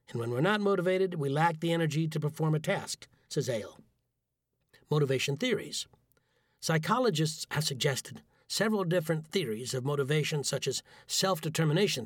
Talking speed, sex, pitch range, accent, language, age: 140 wpm, male, 140-180 Hz, American, English, 60-79